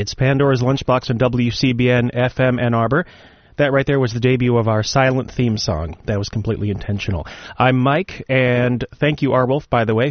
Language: English